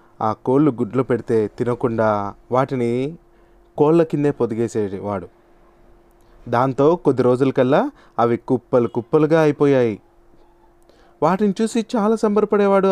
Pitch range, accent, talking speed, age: 115-170 Hz, native, 100 wpm, 20-39